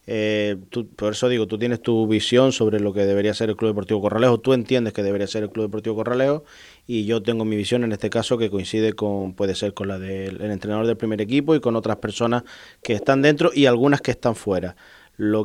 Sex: male